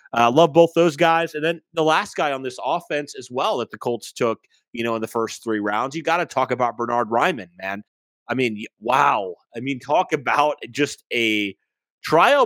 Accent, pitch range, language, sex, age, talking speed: American, 115-165 Hz, English, male, 30-49, 215 wpm